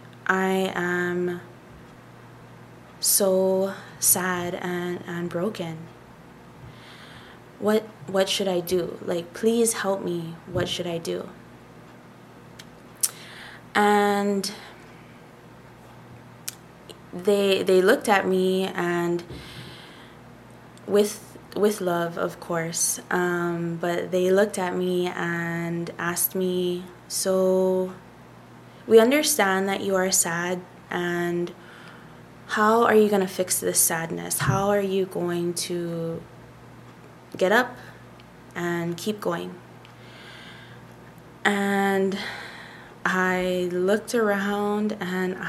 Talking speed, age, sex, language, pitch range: 95 wpm, 20-39, female, English, 170-195 Hz